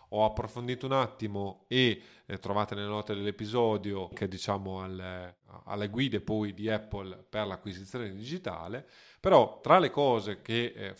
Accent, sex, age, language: native, male, 30-49, Italian